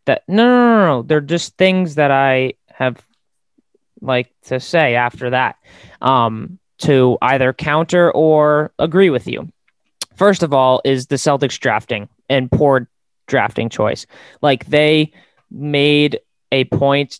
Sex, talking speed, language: male, 140 wpm, English